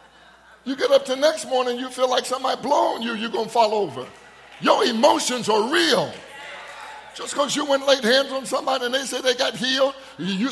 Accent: American